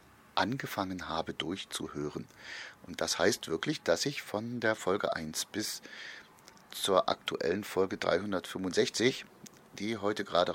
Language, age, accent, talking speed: German, 30-49, German, 120 wpm